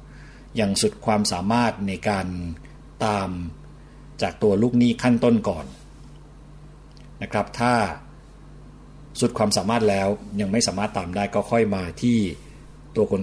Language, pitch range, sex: Thai, 95-115 Hz, male